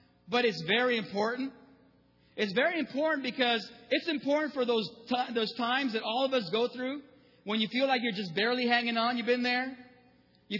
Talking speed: 190 wpm